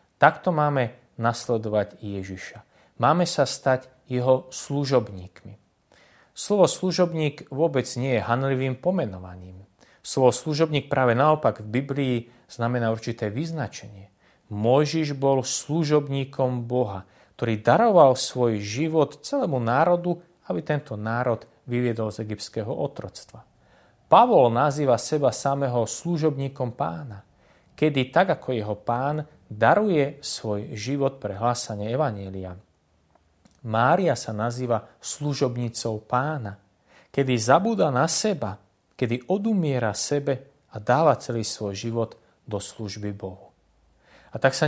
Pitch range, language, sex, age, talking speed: 110-150 Hz, Slovak, male, 30-49, 110 wpm